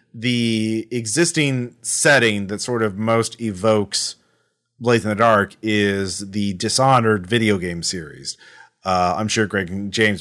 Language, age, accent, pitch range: English, 30-49, American, 105-130 Hz